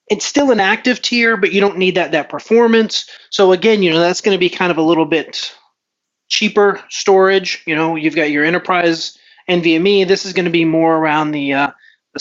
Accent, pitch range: American, 160-215 Hz